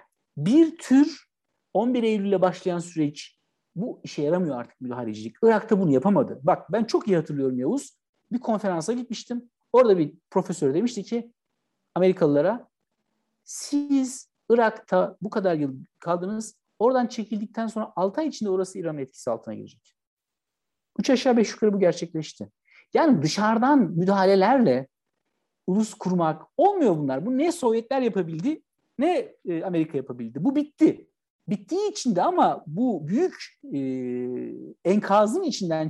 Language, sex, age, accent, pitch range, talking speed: Turkish, male, 60-79, native, 160-245 Hz, 130 wpm